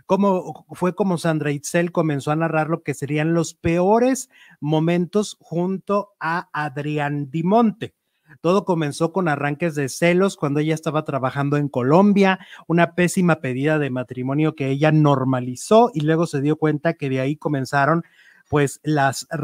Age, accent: 30-49, Mexican